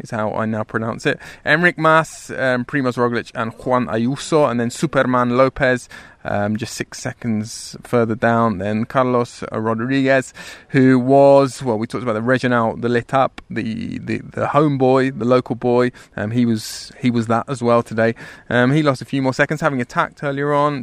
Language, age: English, 20-39